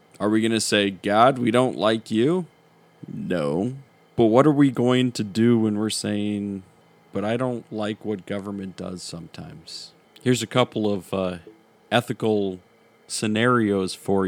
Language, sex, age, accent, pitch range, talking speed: English, male, 40-59, American, 100-120 Hz, 155 wpm